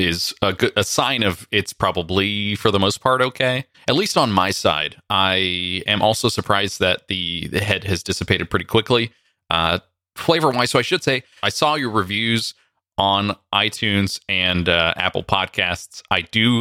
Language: English